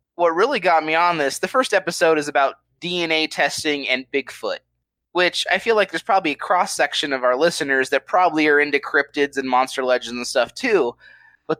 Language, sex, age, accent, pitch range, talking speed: English, male, 20-39, American, 130-170 Hz, 195 wpm